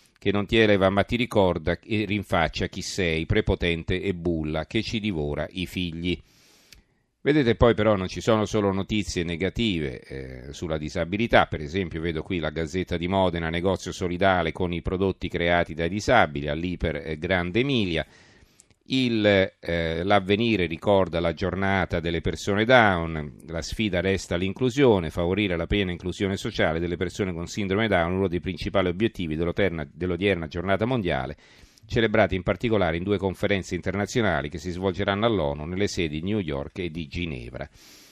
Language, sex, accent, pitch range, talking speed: Italian, male, native, 85-105 Hz, 155 wpm